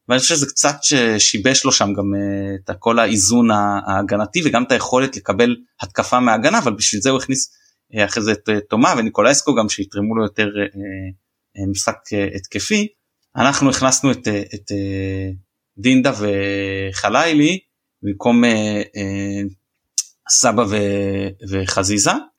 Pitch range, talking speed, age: 100-130 Hz, 115 wpm, 20-39